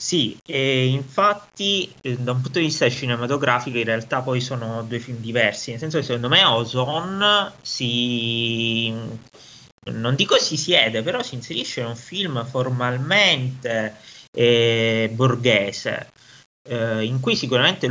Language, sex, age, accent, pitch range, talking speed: Italian, male, 20-39, native, 110-130 Hz, 135 wpm